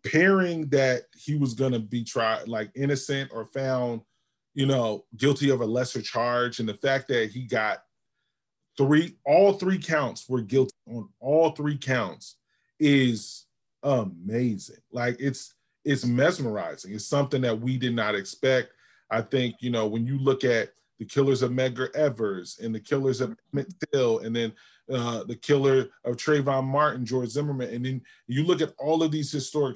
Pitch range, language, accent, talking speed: 125-160 Hz, English, American, 170 wpm